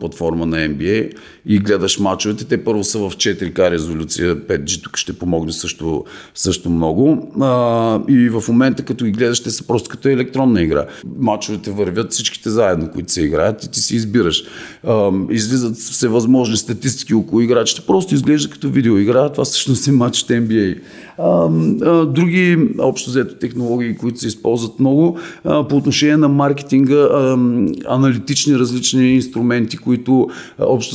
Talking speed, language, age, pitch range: 150 wpm, Bulgarian, 40-59, 100-135 Hz